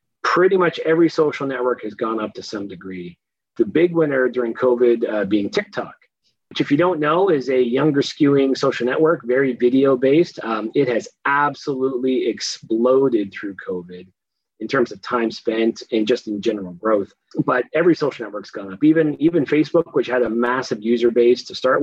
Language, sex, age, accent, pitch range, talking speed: English, male, 30-49, American, 115-155 Hz, 185 wpm